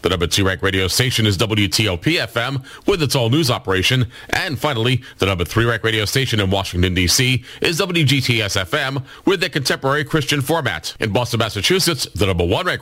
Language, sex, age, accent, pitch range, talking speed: English, male, 40-59, American, 100-135 Hz, 185 wpm